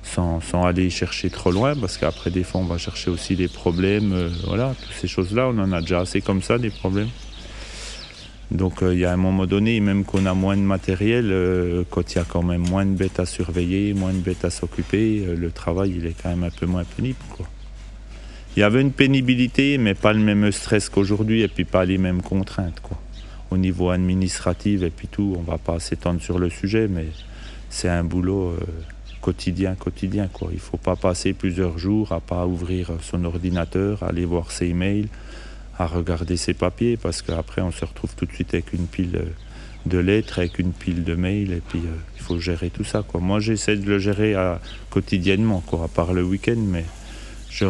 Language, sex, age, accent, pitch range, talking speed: French, male, 30-49, French, 90-100 Hz, 215 wpm